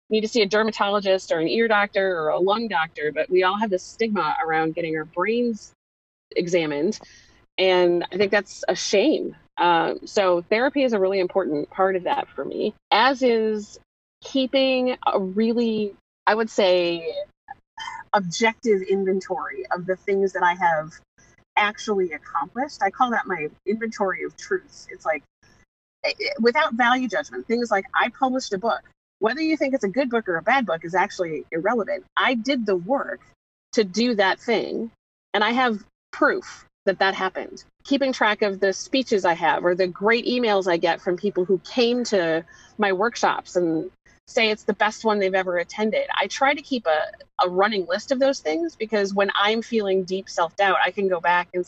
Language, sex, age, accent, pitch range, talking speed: English, female, 30-49, American, 180-235 Hz, 185 wpm